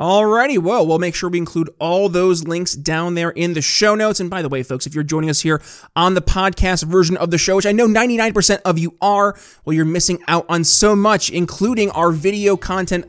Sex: male